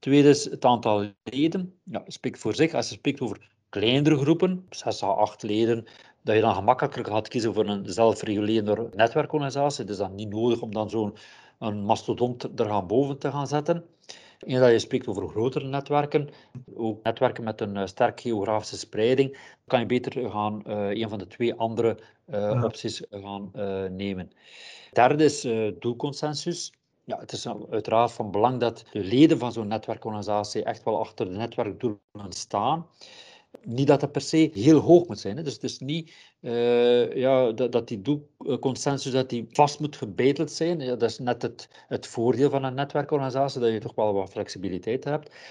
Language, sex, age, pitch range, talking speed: Dutch, male, 50-69, 110-145 Hz, 185 wpm